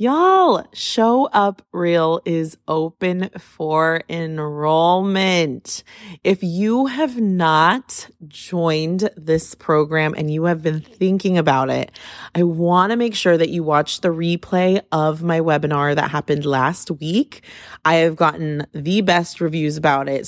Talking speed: 135 wpm